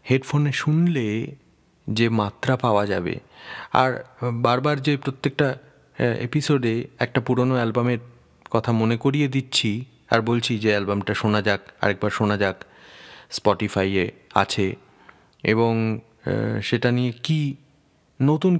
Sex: male